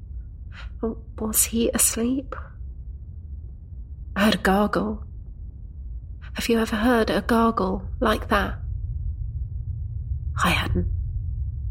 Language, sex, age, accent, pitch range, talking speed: English, female, 30-49, British, 95-125 Hz, 85 wpm